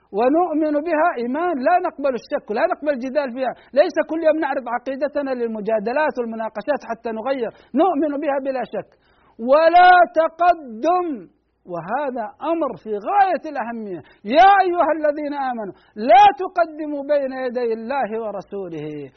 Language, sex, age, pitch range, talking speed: Arabic, male, 60-79, 250-335 Hz, 125 wpm